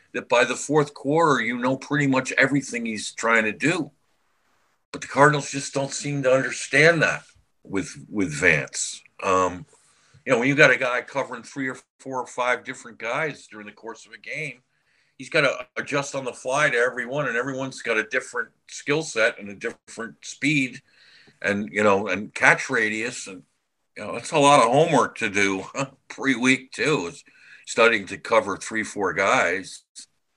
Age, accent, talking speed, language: 50-69, American, 185 wpm, English